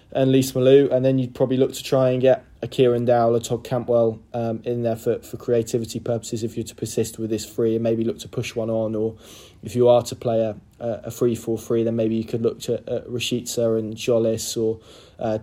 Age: 20-39